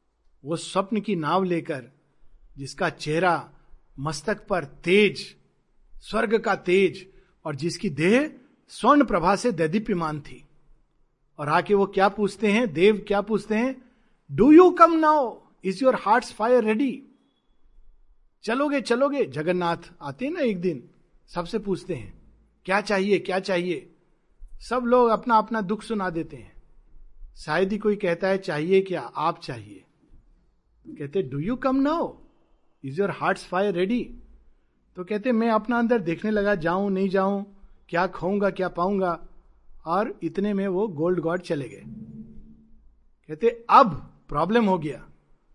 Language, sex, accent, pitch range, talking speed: Hindi, male, native, 165-220 Hz, 145 wpm